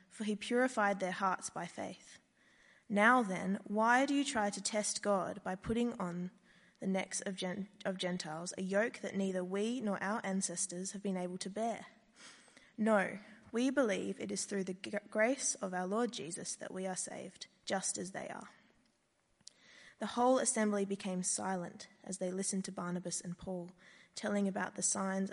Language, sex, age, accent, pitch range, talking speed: English, female, 20-39, Australian, 185-220 Hz, 170 wpm